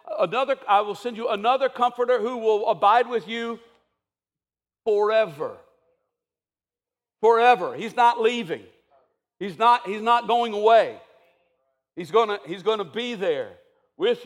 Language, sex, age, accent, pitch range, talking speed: English, male, 60-79, American, 170-225 Hz, 125 wpm